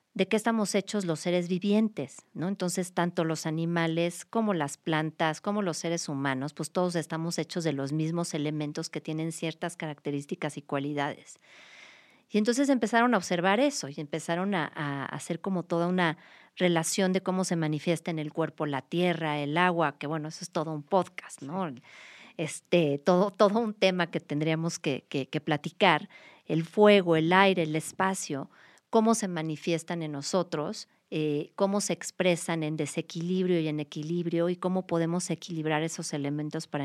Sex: female